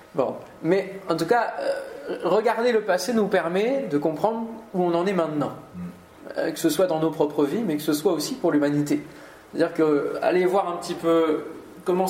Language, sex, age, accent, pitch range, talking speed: French, male, 20-39, French, 155-205 Hz, 200 wpm